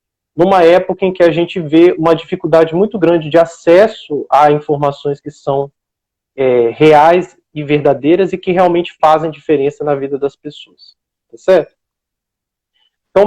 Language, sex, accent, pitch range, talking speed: Portuguese, male, Brazilian, 155-205 Hz, 150 wpm